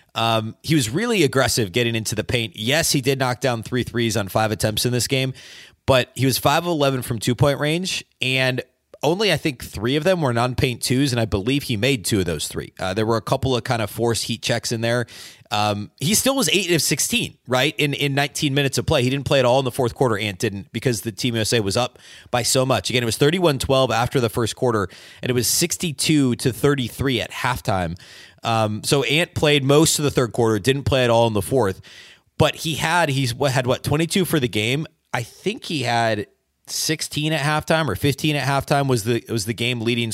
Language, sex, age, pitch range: English, male, 30-49, 115-140 Hz